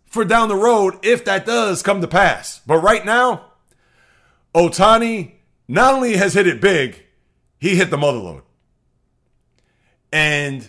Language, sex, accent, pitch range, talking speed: English, male, American, 150-210 Hz, 140 wpm